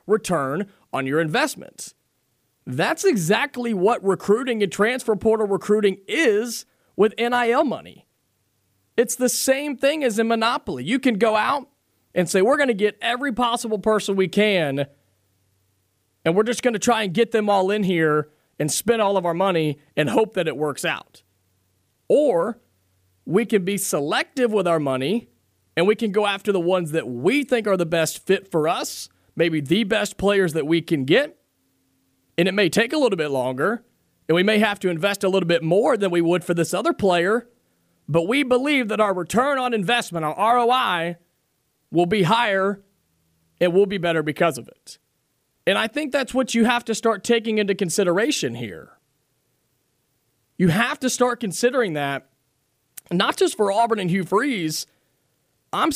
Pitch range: 160-230 Hz